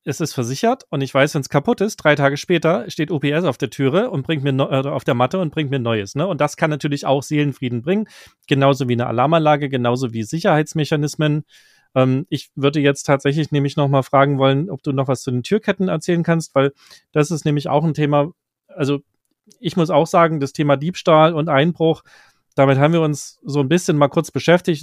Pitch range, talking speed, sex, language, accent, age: 135-155 Hz, 215 wpm, male, German, German, 30-49